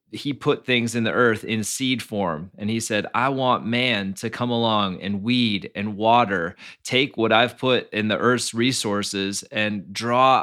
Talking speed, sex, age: 185 wpm, male, 20-39